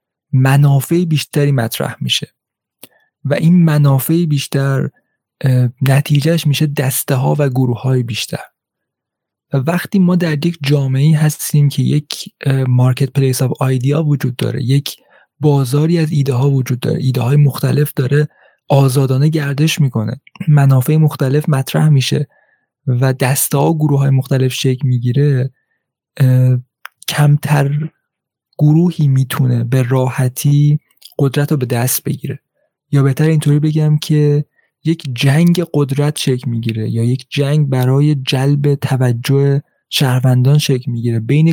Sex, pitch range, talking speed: male, 130-150 Hz, 125 wpm